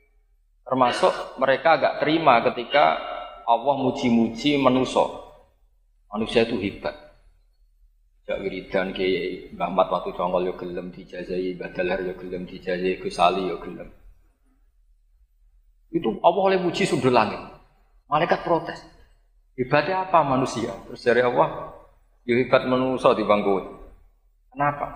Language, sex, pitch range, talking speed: Indonesian, male, 110-160 Hz, 115 wpm